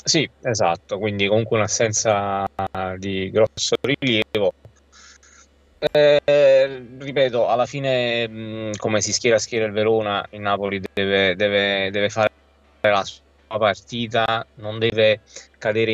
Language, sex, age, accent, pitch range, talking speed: Italian, male, 20-39, native, 95-115 Hz, 115 wpm